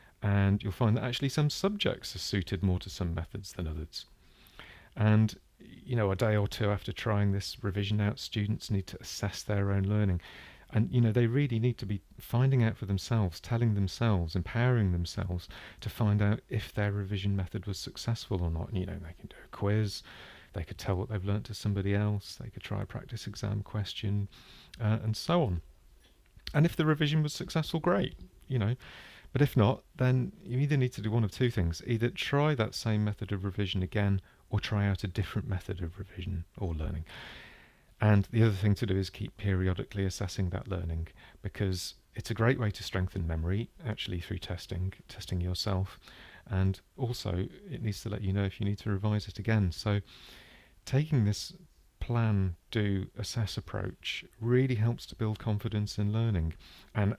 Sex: male